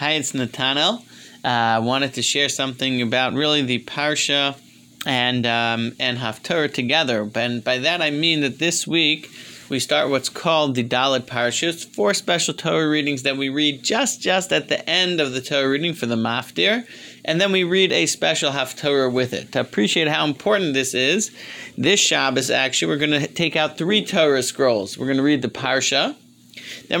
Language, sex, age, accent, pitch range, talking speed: English, male, 30-49, American, 130-170 Hz, 185 wpm